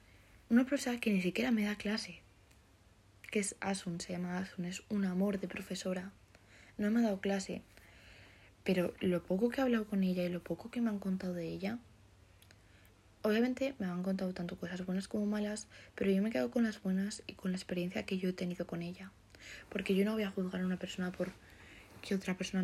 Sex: female